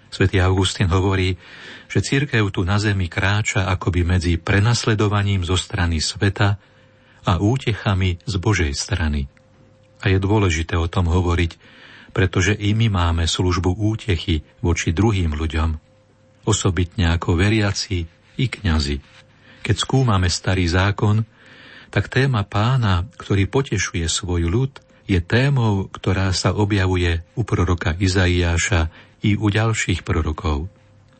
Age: 40-59